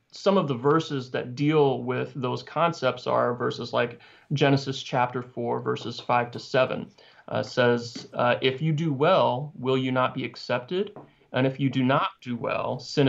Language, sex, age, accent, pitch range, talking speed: English, male, 30-49, American, 125-145 Hz, 180 wpm